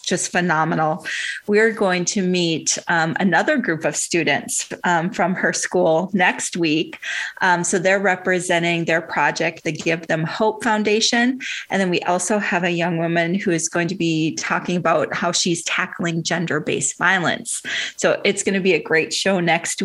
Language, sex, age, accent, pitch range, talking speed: English, female, 30-49, American, 175-205 Hz, 170 wpm